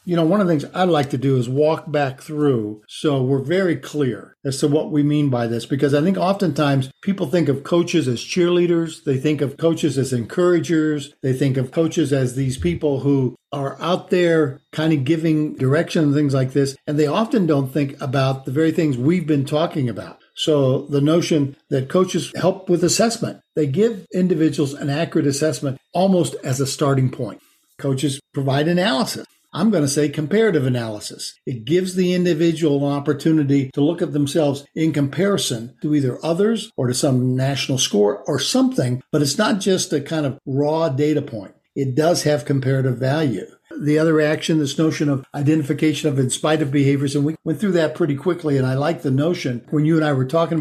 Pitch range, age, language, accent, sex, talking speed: 135-165 Hz, 50-69, English, American, male, 200 wpm